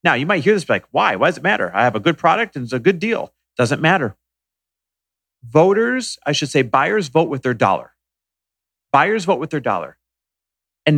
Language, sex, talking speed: English, male, 210 wpm